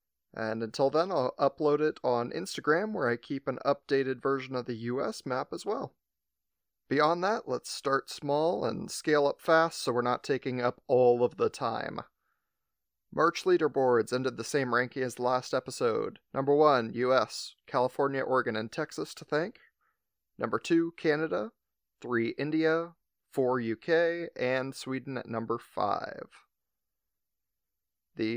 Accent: American